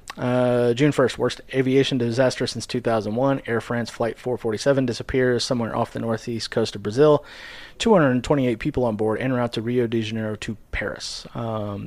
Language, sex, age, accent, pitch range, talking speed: English, male, 30-49, American, 105-125 Hz, 165 wpm